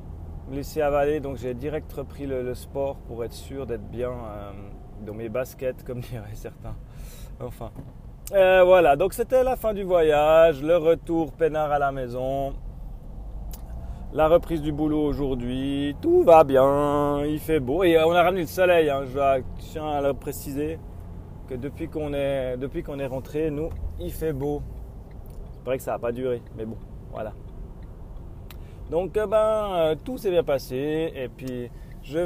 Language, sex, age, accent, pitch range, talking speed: French, male, 30-49, French, 125-165 Hz, 165 wpm